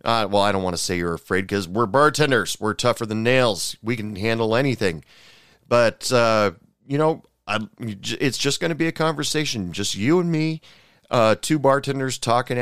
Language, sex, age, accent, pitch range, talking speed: English, male, 40-59, American, 100-135 Hz, 185 wpm